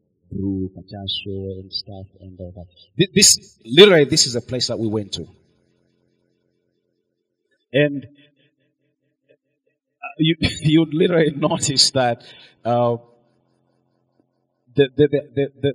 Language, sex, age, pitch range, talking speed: English, male, 30-49, 95-130 Hz, 105 wpm